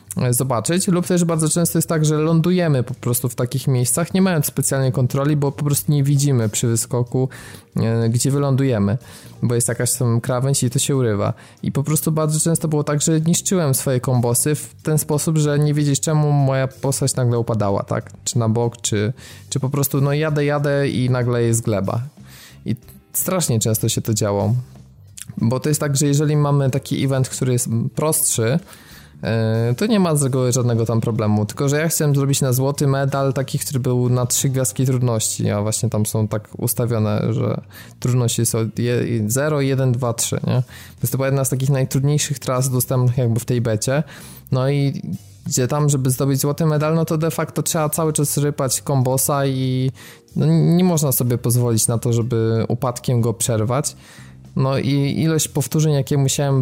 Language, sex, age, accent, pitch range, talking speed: Polish, male, 20-39, native, 115-145 Hz, 185 wpm